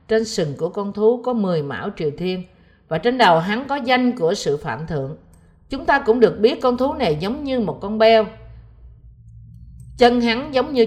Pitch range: 165-235 Hz